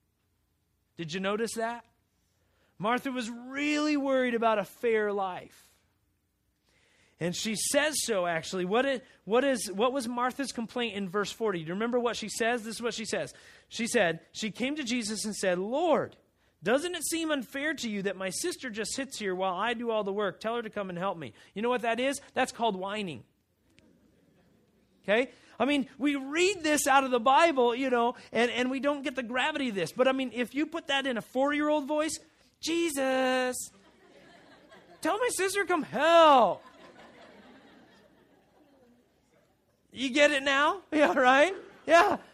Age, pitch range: 30-49, 210-295 Hz